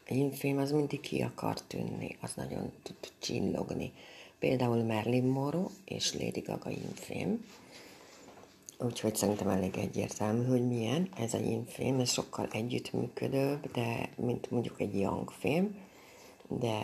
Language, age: Hungarian, 60-79